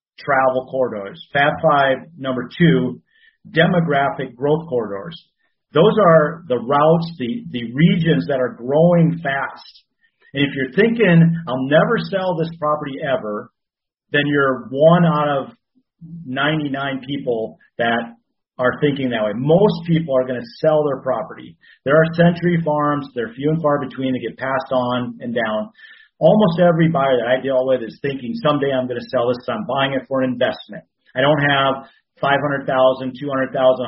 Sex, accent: male, American